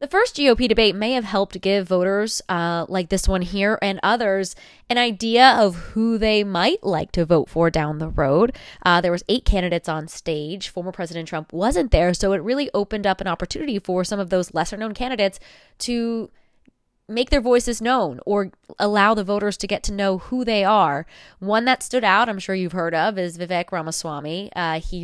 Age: 20-39